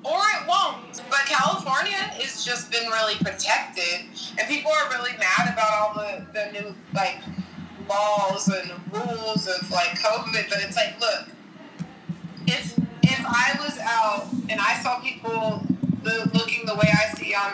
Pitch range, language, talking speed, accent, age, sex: 195-255 Hz, English, 155 wpm, American, 30-49, female